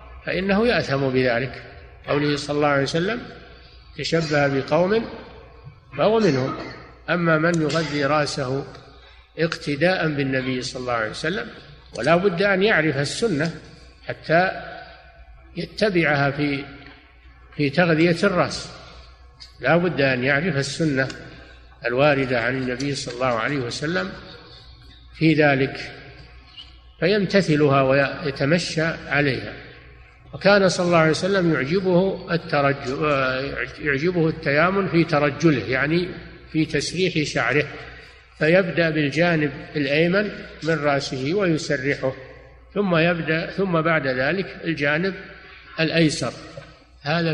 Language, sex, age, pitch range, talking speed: Arabic, male, 60-79, 135-165 Hz, 100 wpm